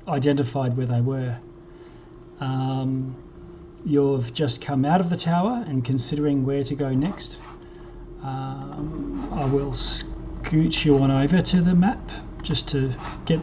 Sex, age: male, 40-59